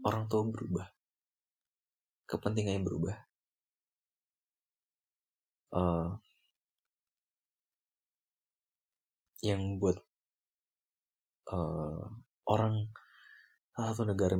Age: 30-49